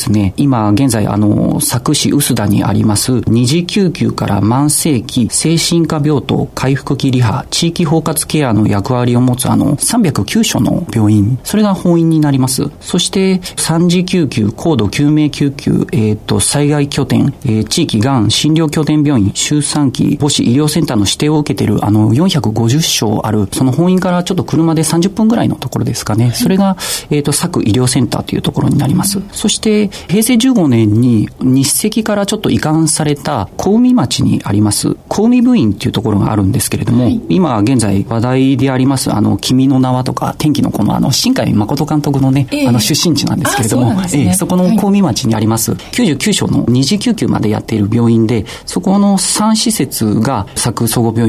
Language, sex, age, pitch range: Japanese, male, 40-59, 115-165 Hz